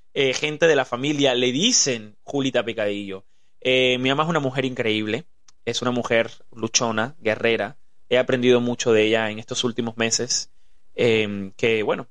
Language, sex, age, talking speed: Spanish, male, 20-39, 165 wpm